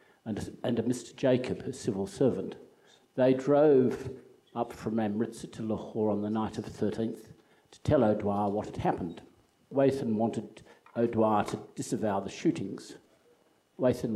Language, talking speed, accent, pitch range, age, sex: English, 150 wpm, Australian, 105-125 Hz, 60-79, male